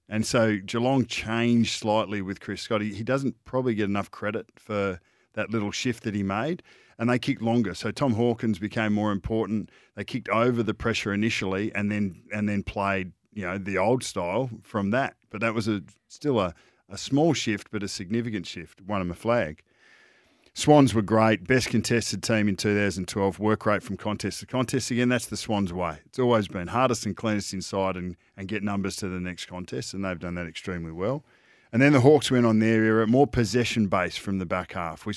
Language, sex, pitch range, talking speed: English, male, 100-115 Hz, 210 wpm